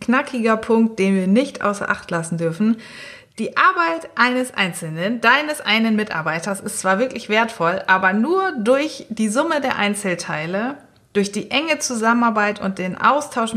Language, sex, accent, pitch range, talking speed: German, female, German, 185-250 Hz, 150 wpm